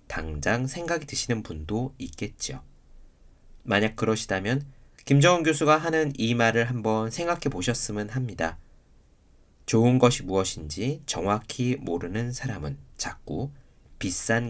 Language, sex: Korean, male